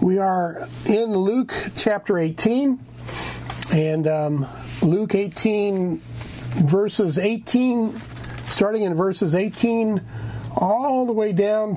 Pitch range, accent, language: 155-195 Hz, American, English